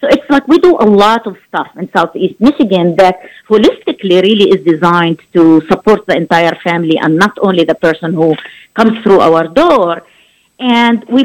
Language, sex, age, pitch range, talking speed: Arabic, female, 50-69, 175-230 Hz, 180 wpm